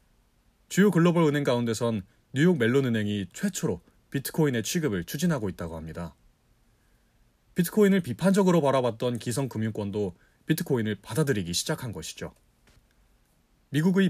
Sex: male